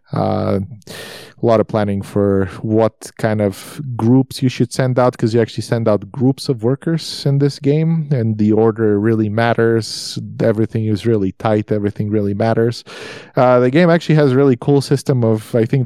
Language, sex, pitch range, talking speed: English, male, 110-130 Hz, 185 wpm